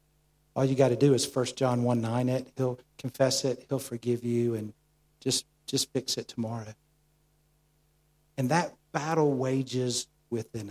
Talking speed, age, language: 155 wpm, 50-69, English